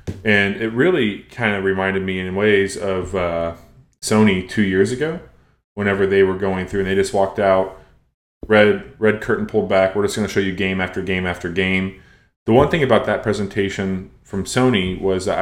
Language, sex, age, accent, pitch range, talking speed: English, male, 20-39, American, 90-105 Hz, 200 wpm